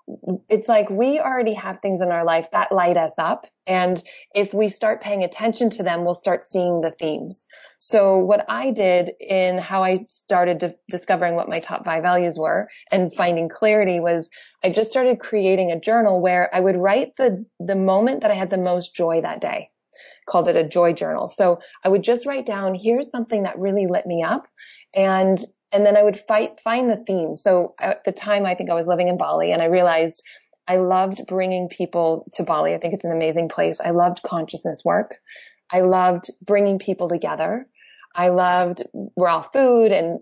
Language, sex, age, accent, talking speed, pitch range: English, female, 20-39, American, 200 wpm, 175-215 Hz